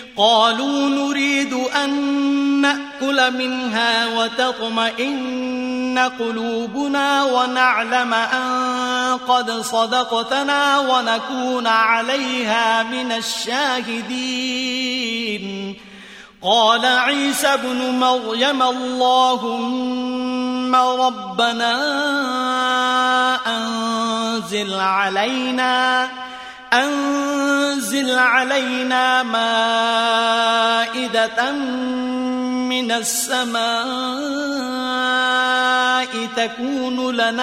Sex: male